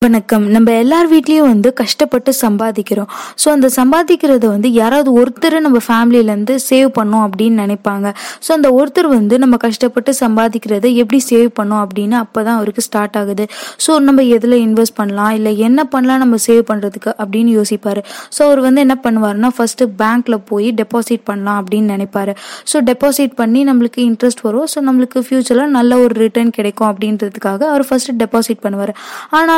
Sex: female